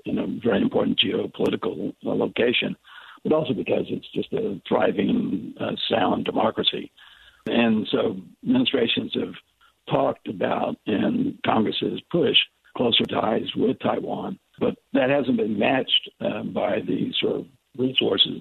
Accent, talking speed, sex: American, 135 wpm, male